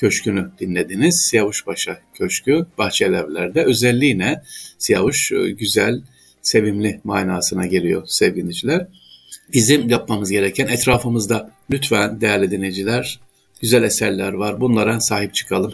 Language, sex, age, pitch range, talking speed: Turkish, male, 50-69, 100-125 Hz, 100 wpm